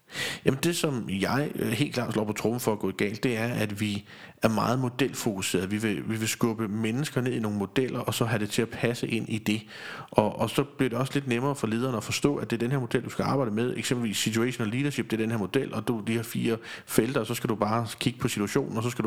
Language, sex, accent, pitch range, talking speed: Danish, male, native, 110-130 Hz, 275 wpm